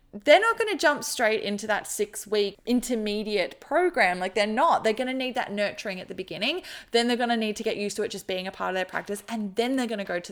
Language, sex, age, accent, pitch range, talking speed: English, female, 20-39, Australian, 210-255 Hz, 280 wpm